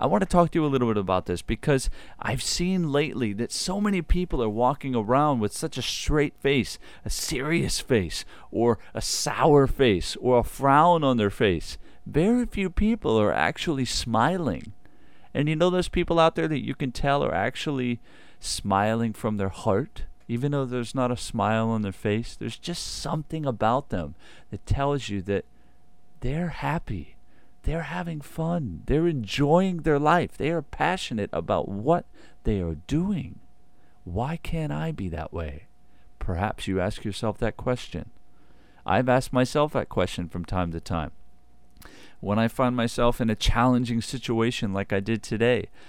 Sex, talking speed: male, 170 wpm